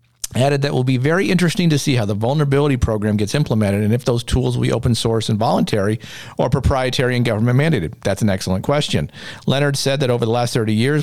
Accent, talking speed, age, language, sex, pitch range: American, 225 wpm, 50-69, English, male, 110-140 Hz